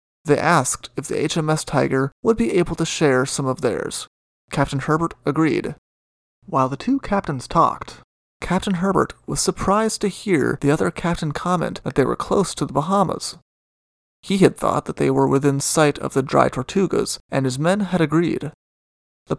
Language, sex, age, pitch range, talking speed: English, male, 30-49, 125-170 Hz, 175 wpm